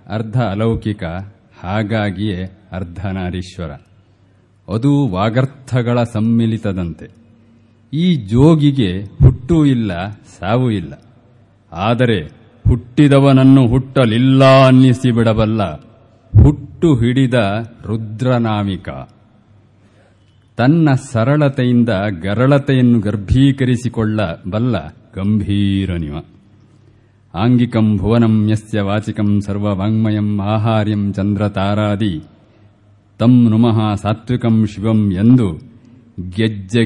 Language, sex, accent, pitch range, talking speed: Kannada, male, native, 100-120 Hz, 60 wpm